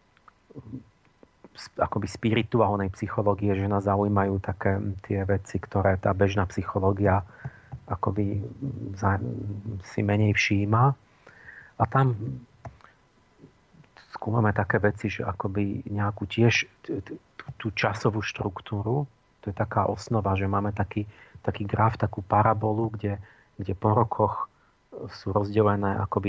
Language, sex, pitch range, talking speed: Slovak, male, 100-110 Hz, 105 wpm